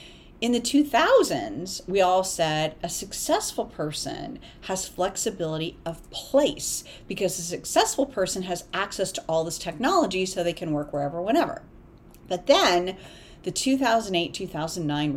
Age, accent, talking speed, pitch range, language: 40-59, American, 130 wpm, 165-275 Hz, English